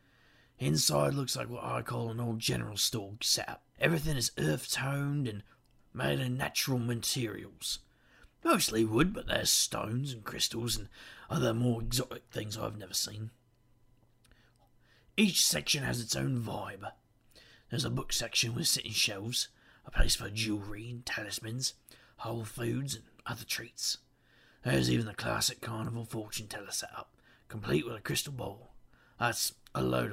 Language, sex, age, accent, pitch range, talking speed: English, male, 40-59, British, 105-120 Hz, 145 wpm